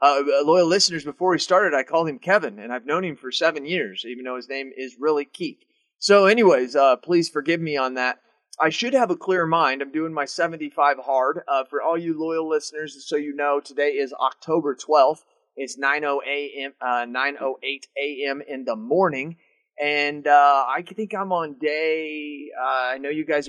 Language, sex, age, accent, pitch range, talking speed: English, male, 30-49, American, 135-165 Hz, 190 wpm